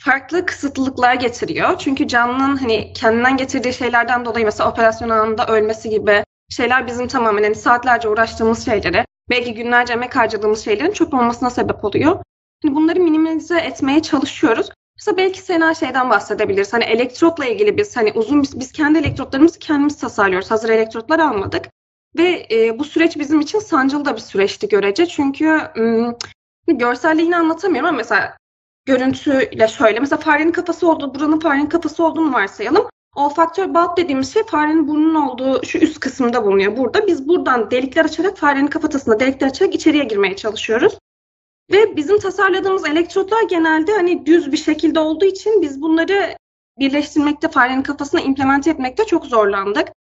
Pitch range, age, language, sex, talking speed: 245-330 Hz, 20-39, Turkish, female, 155 wpm